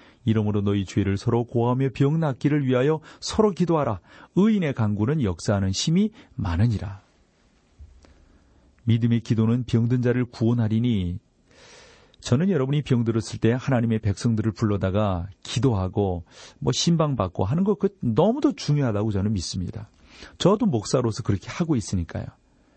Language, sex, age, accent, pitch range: Korean, male, 40-59, native, 100-135 Hz